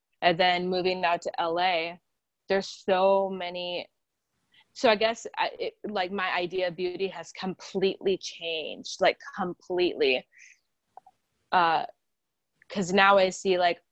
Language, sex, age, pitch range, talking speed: English, female, 20-39, 175-200 Hz, 120 wpm